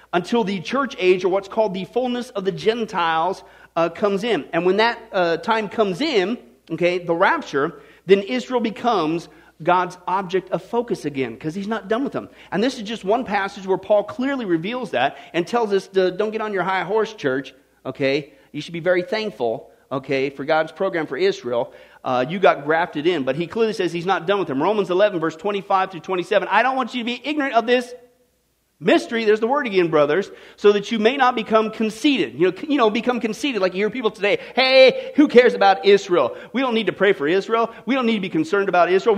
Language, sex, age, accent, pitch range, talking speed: English, male, 40-59, American, 180-245 Hz, 220 wpm